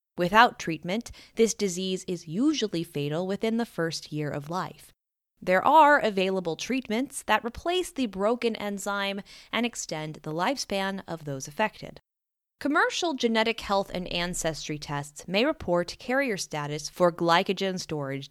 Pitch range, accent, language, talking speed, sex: 170-240 Hz, American, English, 140 wpm, female